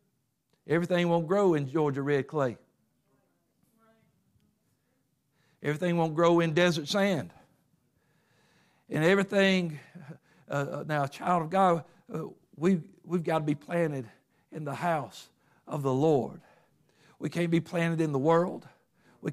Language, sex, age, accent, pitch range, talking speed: English, male, 60-79, American, 150-175 Hz, 125 wpm